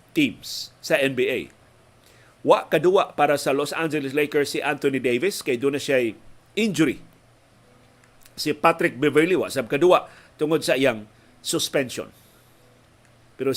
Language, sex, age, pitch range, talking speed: Filipino, male, 40-59, 130-170 Hz, 115 wpm